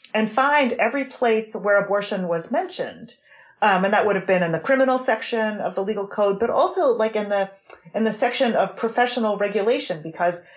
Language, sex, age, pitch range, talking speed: English, female, 40-59, 180-225 Hz, 195 wpm